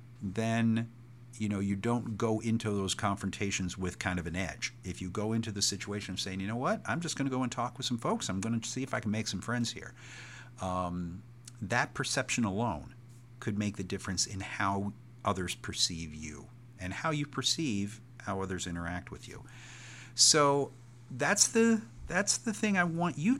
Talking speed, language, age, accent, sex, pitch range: 190 wpm, English, 50-69, American, male, 95-125 Hz